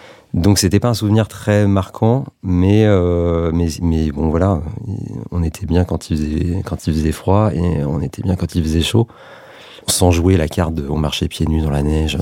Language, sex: French, male